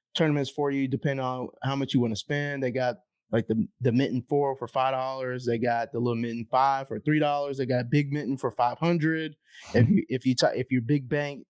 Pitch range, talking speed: 125-145 Hz, 240 wpm